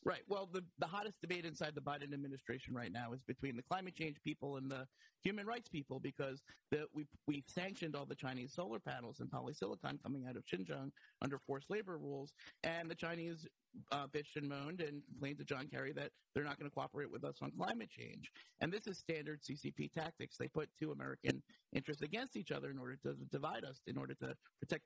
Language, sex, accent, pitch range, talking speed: English, male, American, 140-180 Hz, 215 wpm